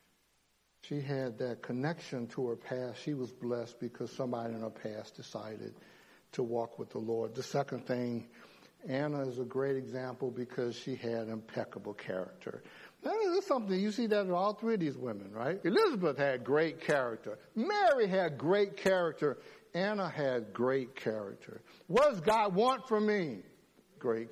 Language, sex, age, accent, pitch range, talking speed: English, male, 60-79, American, 125-200 Hz, 165 wpm